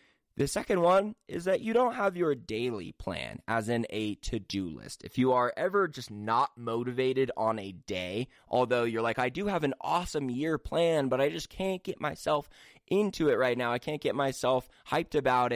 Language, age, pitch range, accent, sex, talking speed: English, 20-39, 115-135 Hz, American, male, 200 wpm